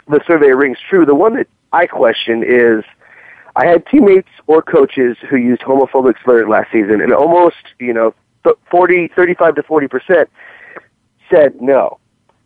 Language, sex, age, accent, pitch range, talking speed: English, male, 30-49, American, 125-175 Hz, 155 wpm